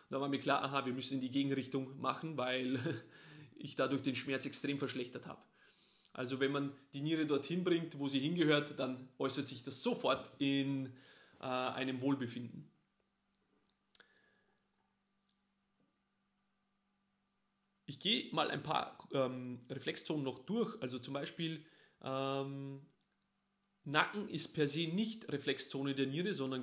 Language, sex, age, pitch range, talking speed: German, male, 30-49, 135-190 Hz, 135 wpm